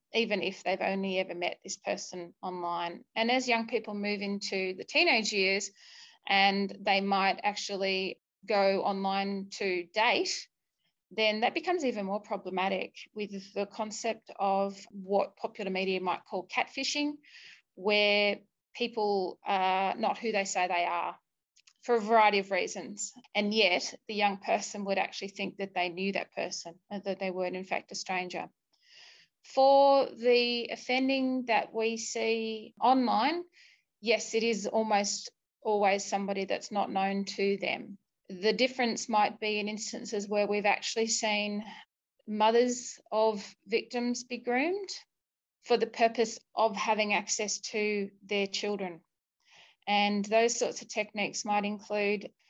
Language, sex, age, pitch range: English, female, 30-49, 195-230 Hz